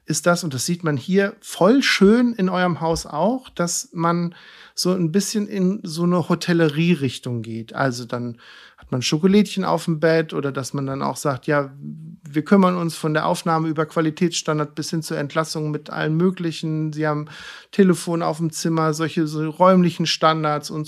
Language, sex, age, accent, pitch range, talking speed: German, male, 50-69, German, 145-180 Hz, 185 wpm